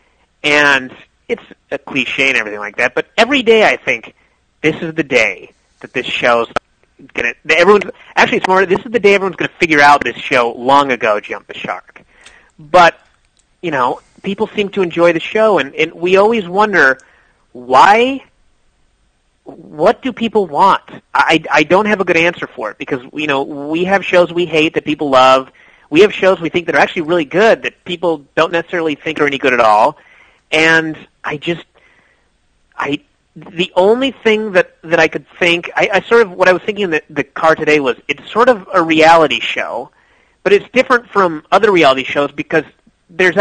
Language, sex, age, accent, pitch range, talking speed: English, male, 30-49, American, 150-200 Hz, 195 wpm